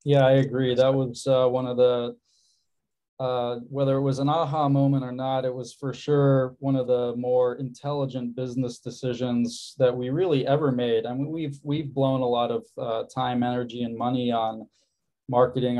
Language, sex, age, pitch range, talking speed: English, male, 20-39, 120-135 Hz, 185 wpm